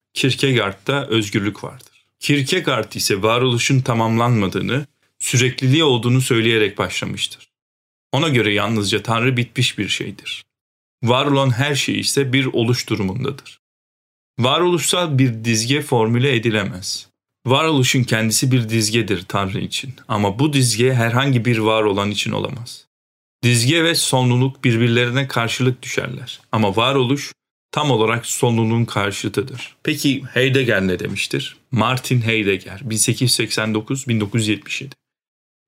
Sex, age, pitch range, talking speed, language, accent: male, 40-59, 110-135 Hz, 110 wpm, Turkish, native